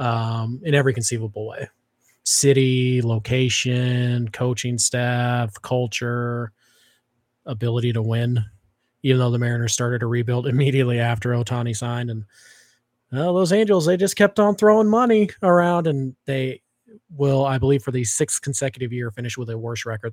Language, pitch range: English, 120-140 Hz